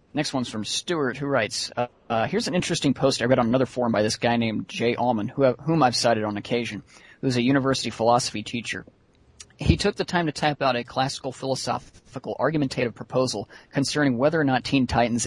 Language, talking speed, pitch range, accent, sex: English, 200 wpm, 110-135 Hz, American, male